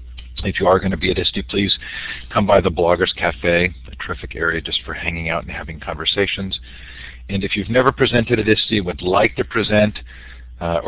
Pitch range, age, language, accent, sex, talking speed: 75-95 Hz, 50-69, English, American, male, 200 wpm